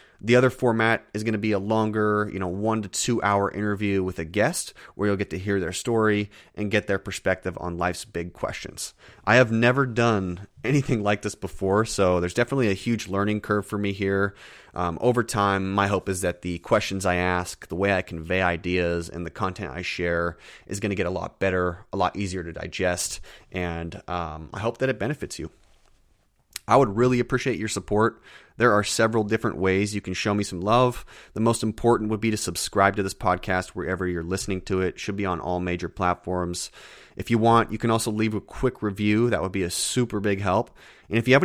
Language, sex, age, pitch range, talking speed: English, male, 30-49, 90-110 Hz, 220 wpm